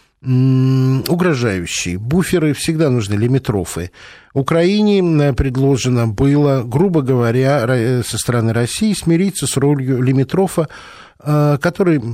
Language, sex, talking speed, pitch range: Russian, male, 90 wpm, 110-150 Hz